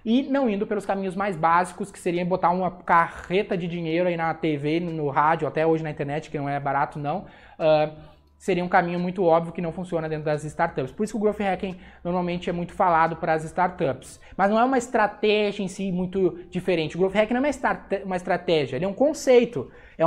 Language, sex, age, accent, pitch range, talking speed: Portuguese, male, 20-39, Brazilian, 170-215 Hz, 225 wpm